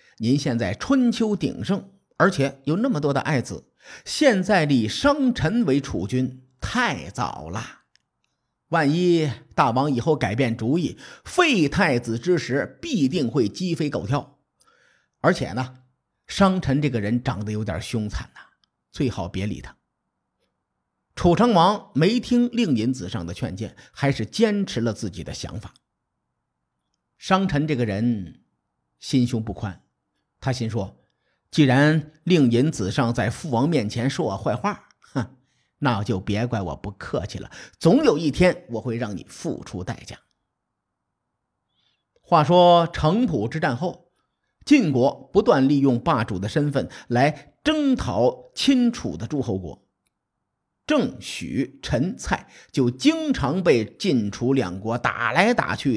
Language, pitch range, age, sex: Chinese, 115-170 Hz, 50-69, male